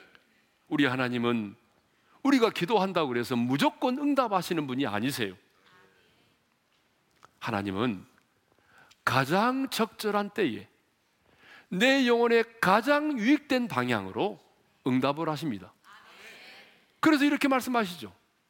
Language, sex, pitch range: Korean, male, 175-275 Hz